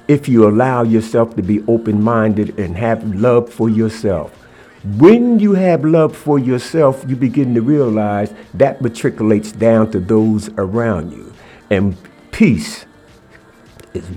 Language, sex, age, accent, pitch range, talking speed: English, male, 60-79, American, 95-115 Hz, 135 wpm